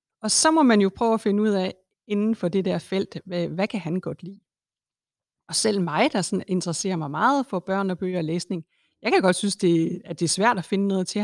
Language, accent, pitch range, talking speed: Danish, native, 170-210 Hz, 245 wpm